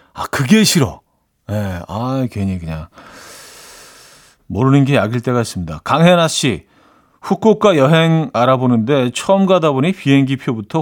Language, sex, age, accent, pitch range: Korean, male, 40-59, native, 120-165 Hz